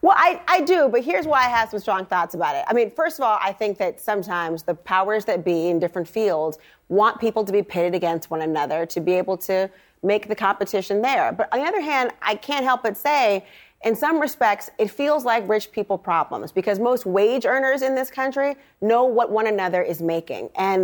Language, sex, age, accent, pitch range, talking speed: English, female, 30-49, American, 185-235 Hz, 225 wpm